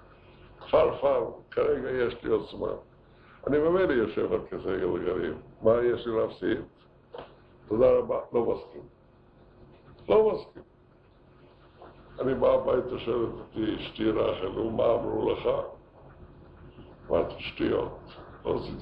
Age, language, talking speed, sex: 60-79, Hebrew, 105 wpm, female